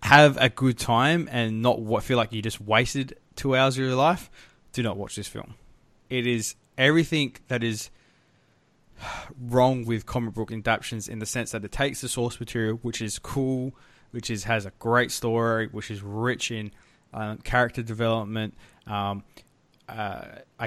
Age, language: 20-39, English